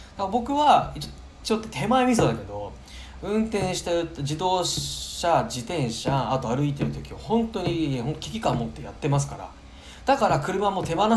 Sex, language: male, Japanese